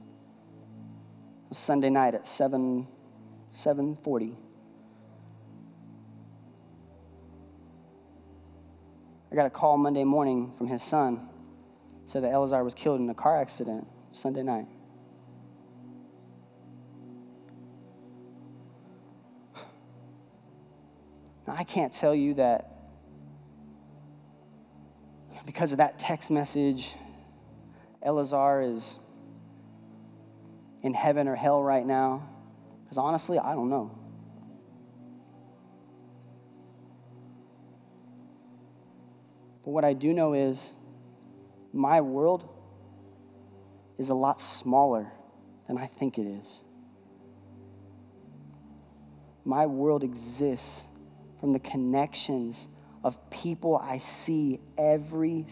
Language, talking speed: English, 85 wpm